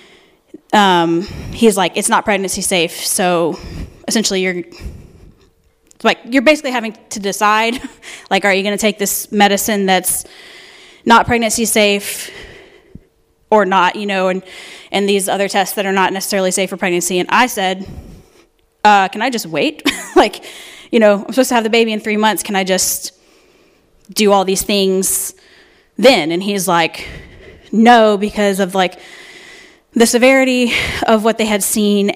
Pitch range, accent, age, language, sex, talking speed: 195-265 Hz, American, 10-29, English, female, 160 wpm